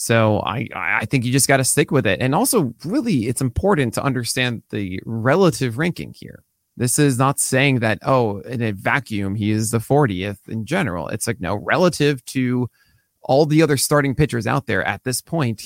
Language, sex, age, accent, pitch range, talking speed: English, male, 20-39, American, 115-155 Hz, 200 wpm